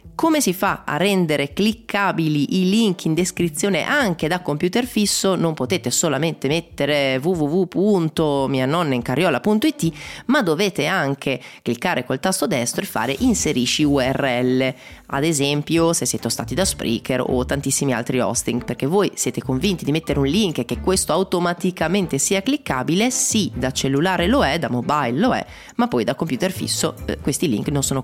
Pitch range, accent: 135-190 Hz, native